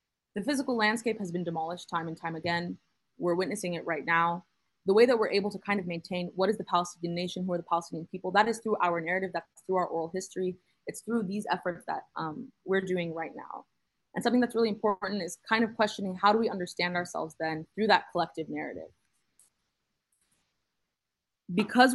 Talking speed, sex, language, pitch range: 200 wpm, female, English, 170-205 Hz